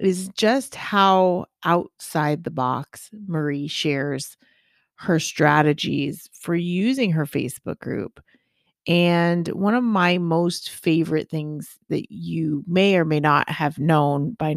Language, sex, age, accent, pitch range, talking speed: English, female, 30-49, American, 155-190 Hz, 130 wpm